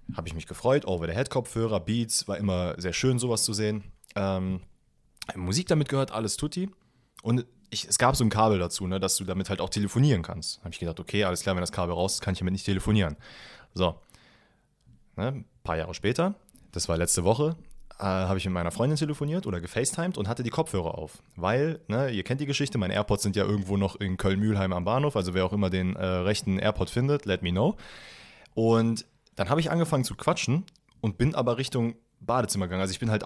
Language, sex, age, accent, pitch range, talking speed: German, male, 30-49, German, 95-125 Hz, 225 wpm